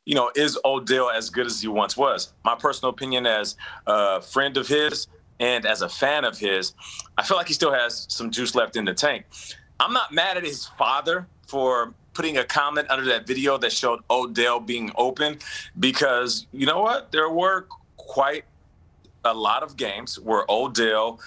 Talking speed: 190 wpm